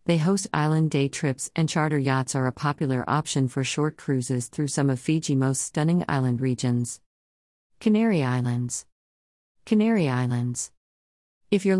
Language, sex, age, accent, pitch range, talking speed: English, female, 50-69, American, 125-160 Hz, 145 wpm